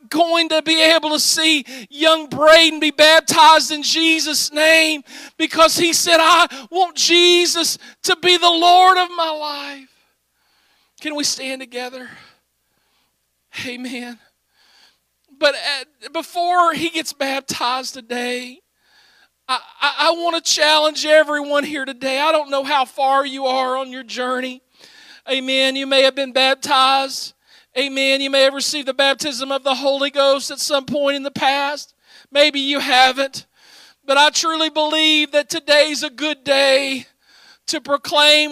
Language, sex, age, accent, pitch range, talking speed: English, male, 40-59, American, 265-310 Hz, 145 wpm